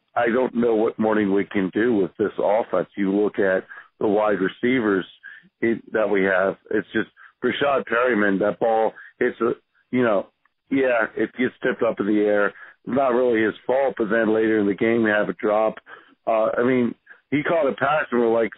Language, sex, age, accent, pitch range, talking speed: English, male, 50-69, American, 105-130 Hz, 205 wpm